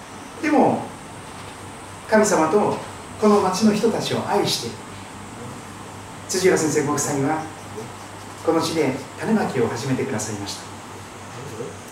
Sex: male